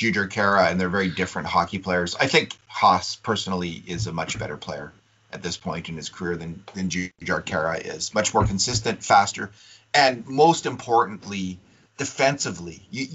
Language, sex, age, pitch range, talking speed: English, male, 30-49, 95-110 Hz, 170 wpm